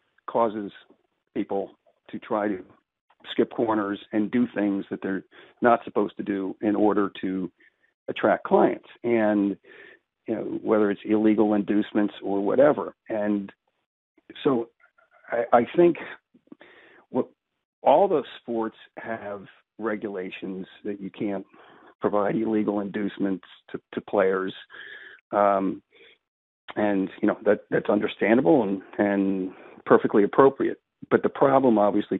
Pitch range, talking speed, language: 100-115 Hz, 120 wpm, English